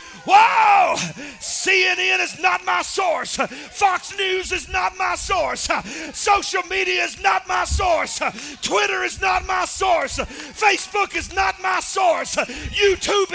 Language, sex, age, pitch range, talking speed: English, male, 40-59, 350-395 Hz, 130 wpm